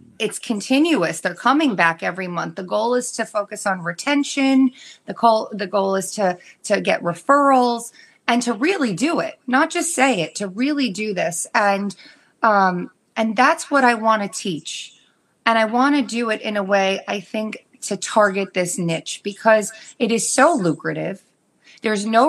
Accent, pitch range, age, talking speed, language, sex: American, 195-260 Hz, 30-49, 180 wpm, English, female